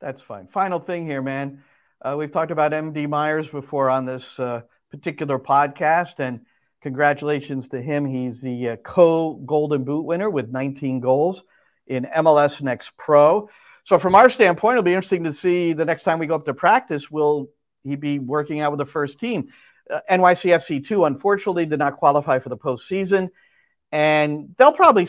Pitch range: 135-180 Hz